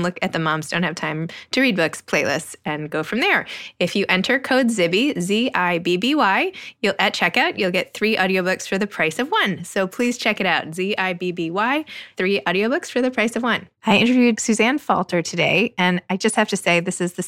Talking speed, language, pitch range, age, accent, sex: 210 wpm, English, 160-210 Hz, 20-39, American, female